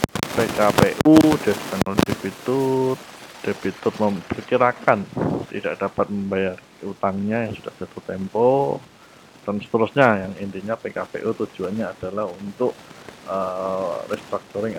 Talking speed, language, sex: 90 wpm, Indonesian, male